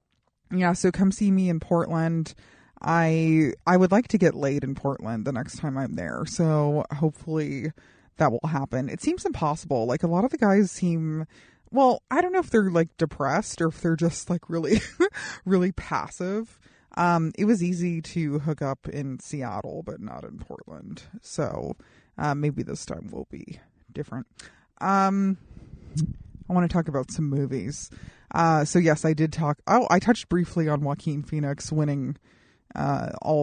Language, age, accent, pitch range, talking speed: English, 30-49, American, 145-180 Hz, 175 wpm